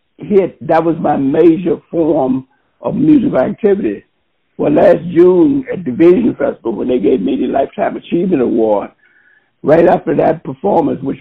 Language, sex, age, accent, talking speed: English, male, 60-79, American, 150 wpm